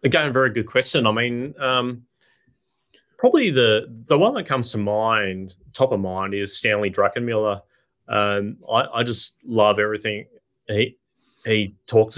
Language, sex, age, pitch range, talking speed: English, male, 30-49, 100-120 Hz, 145 wpm